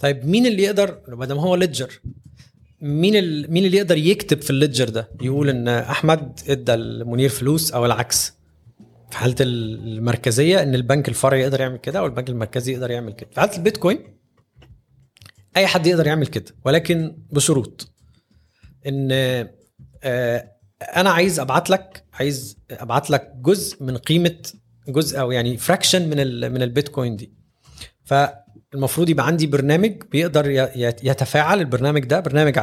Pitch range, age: 120-155 Hz, 20-39